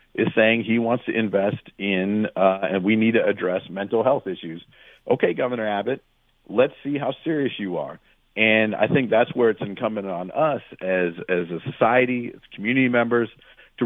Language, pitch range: English, 95-120 Hz